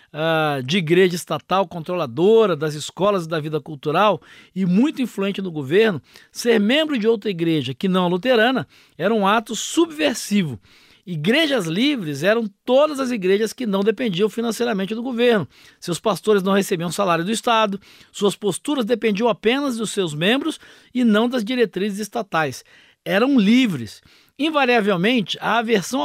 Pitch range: 175-230 Hz